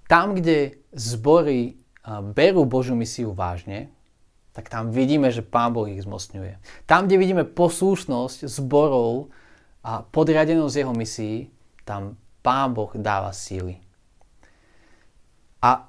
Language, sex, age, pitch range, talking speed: Slovak, male, 30-49, 105-140 Hz, 115 wpm